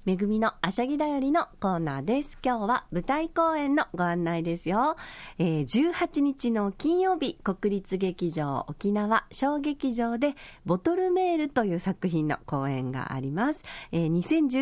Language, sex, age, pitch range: Japanese, female, 40-59, 165-260 Hz